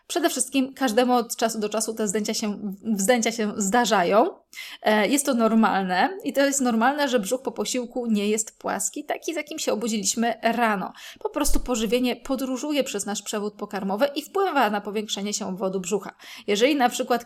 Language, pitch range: Polish, 215-260 Hz